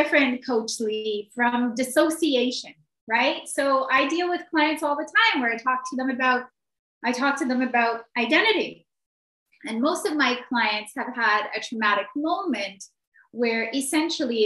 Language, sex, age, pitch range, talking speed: English, female, 30-49, 220-290 Hz, 160 wpm